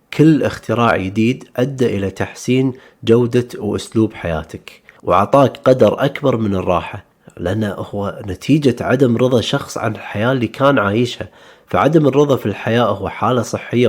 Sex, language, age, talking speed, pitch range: male, Arabic, 30-49, 140 wpm, 100-130 Hz